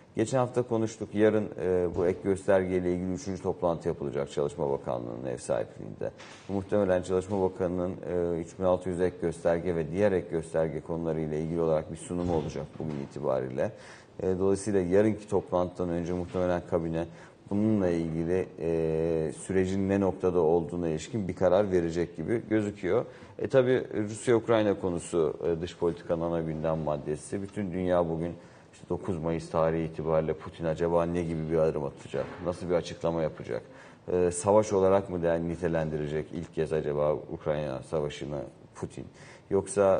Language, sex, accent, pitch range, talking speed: Turkish, male, native, 85-95 Hz, 145 wpm